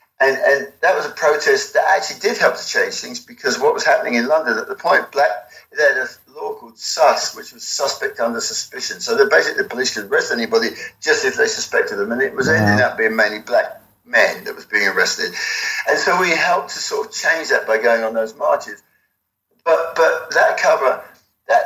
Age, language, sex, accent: 60-79, English, male, British